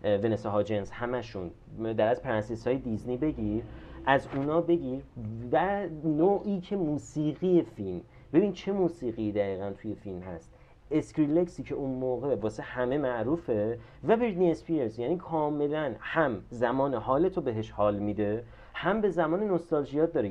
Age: 30-49